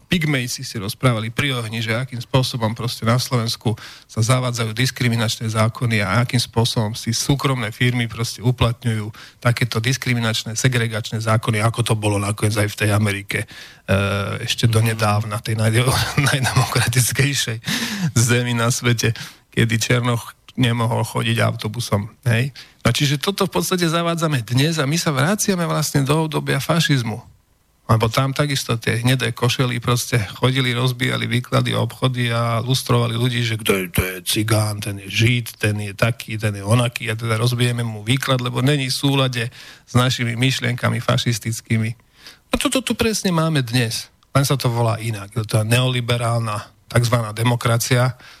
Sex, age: male, 40-59